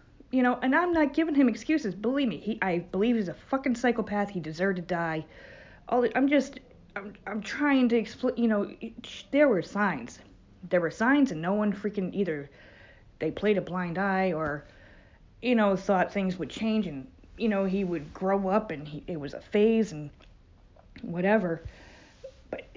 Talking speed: 190 wpm